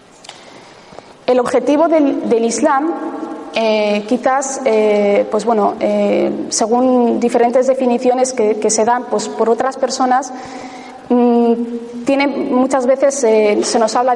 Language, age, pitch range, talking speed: Spanish, 20-39, 225-265 Hz, 125 wpm